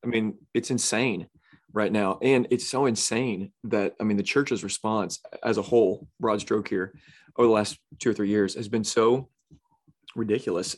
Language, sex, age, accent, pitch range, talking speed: English, male, 30-49, American, 100-115 Hz, 185 wpm